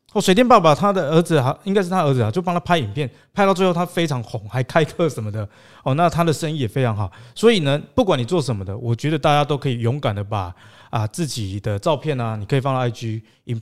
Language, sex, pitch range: Chinese, male, 115-165 Hz